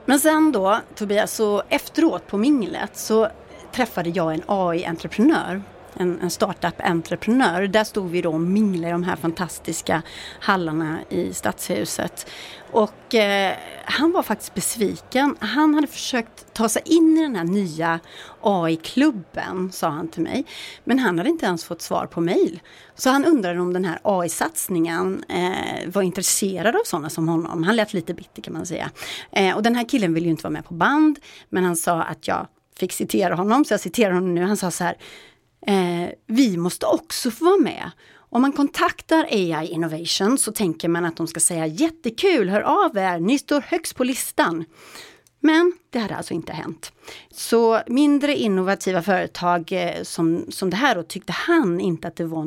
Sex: female